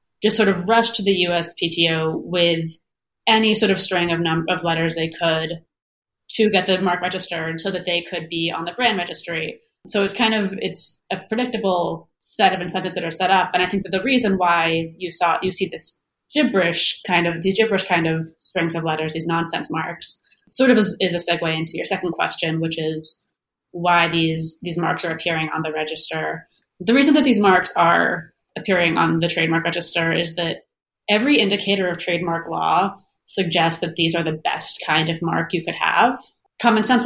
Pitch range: 165-195 Hz